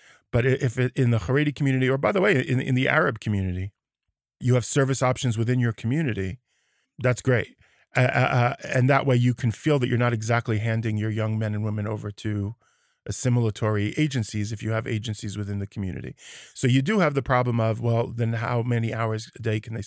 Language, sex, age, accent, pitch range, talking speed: English, male, 40-59, American, 110-135 Hz, 210 wpm